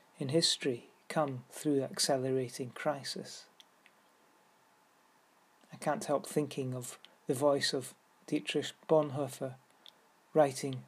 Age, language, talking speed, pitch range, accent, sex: 40-59, English, 95 wpm, 135-160 Hz, British, male